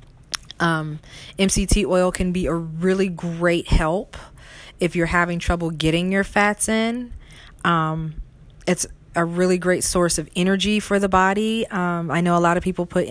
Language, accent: English, American